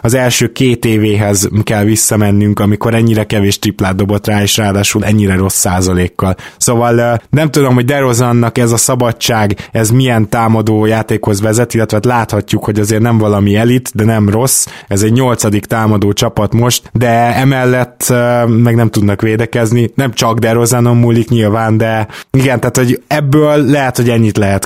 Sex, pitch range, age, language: male, 105-120 Hz, 20-39, Hungarian